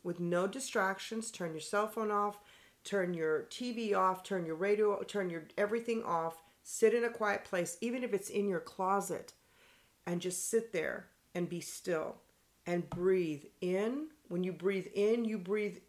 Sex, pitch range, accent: female, 165-205 Hz, American